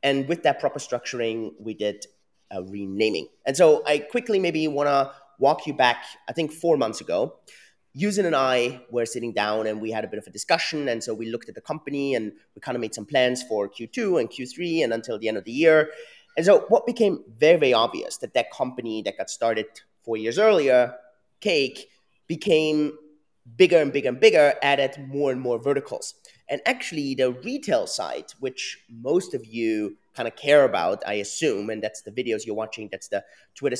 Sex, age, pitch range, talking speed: male, 30-49, 110-165 Hz, 205 wpm